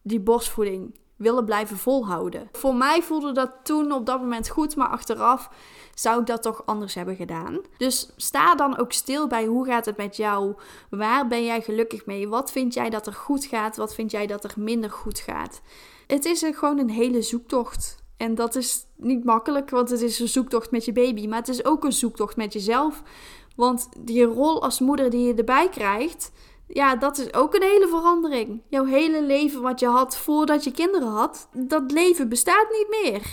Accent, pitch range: Dutch, 225-290 Hz